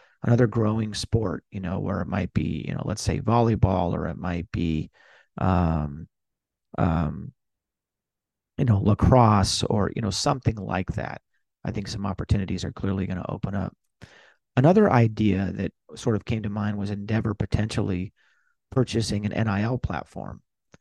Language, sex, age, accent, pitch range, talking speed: English, male, 40-59, American, 95-115 Hz, 155 wpm